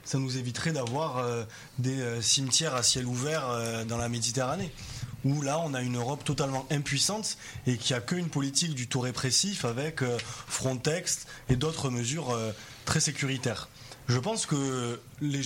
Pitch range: 120-150 Hz